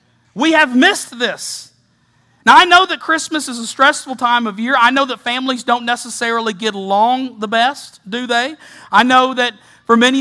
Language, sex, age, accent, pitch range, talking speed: English, male, 50-69, American, 220-275 Hz, 190 wpm